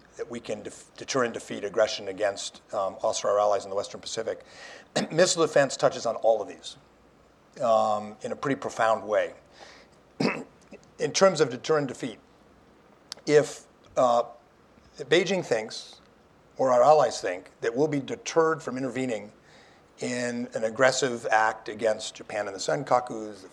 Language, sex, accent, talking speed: English, male, American, 155 wpm